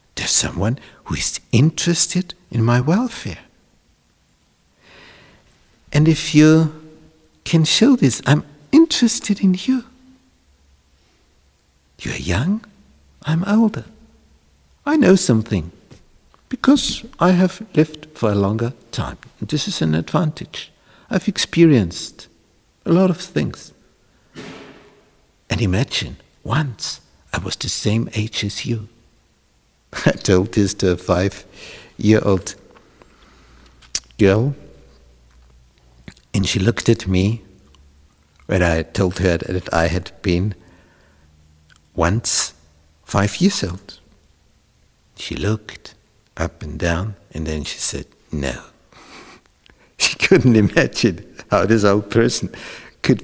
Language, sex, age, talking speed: English, male, 60-79, 110 wpm